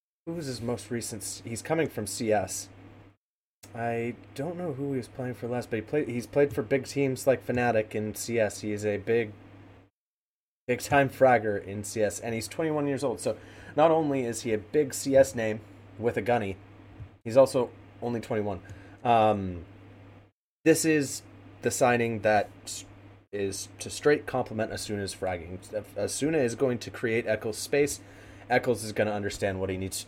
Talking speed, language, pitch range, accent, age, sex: 175 wpm, English, 100-115 Hz, American, 30-49, male